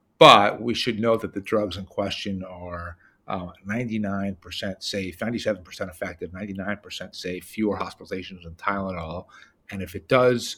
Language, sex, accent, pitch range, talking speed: English, male, American, 90-110 Hz, 140 wpm